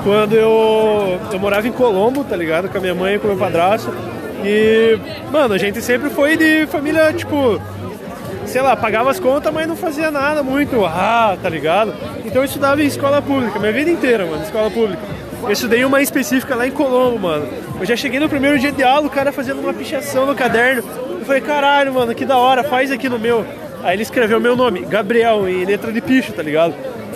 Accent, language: Brazilian, Portuguese